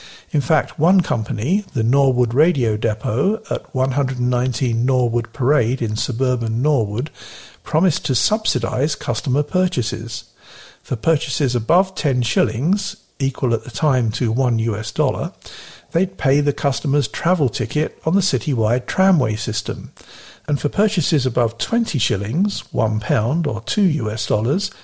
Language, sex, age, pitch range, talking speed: English, male, 50-69, 120-155 Hz, 135 wpm